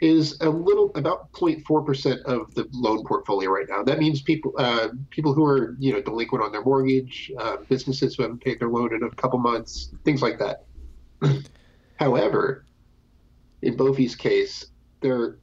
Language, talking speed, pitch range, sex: English, 170 wpm, 115-145 Hz, male